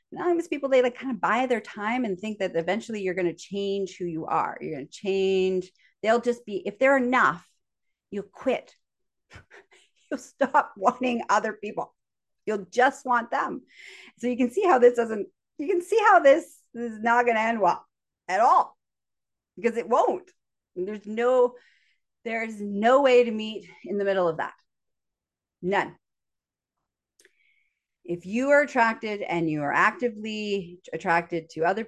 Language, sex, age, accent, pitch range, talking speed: English, female, 40-59, American, 170-240 Hz, 165 wpm